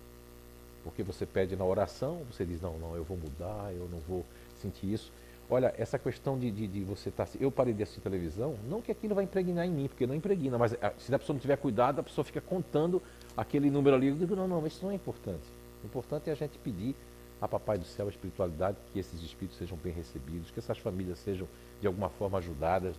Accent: Brazilian